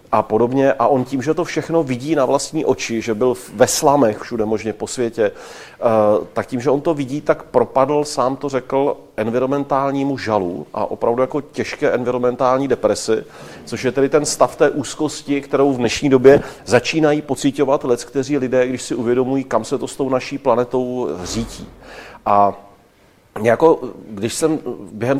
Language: Czech